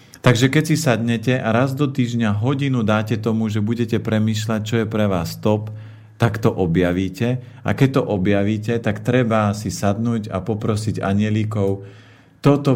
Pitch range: 100-120 Hz